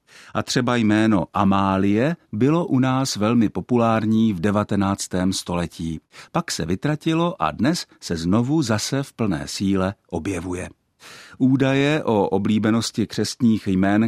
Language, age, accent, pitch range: Czech, 50-69, native, 95-135 Hz